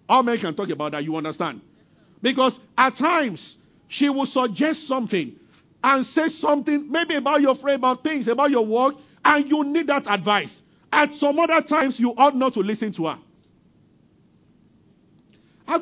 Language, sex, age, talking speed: English, male, 50-69, 165 wpm